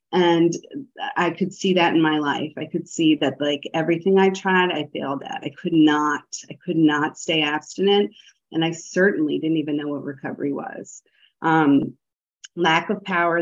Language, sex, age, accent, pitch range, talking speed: English, female, 30-49, American, 145-180 Hz, 180 wpm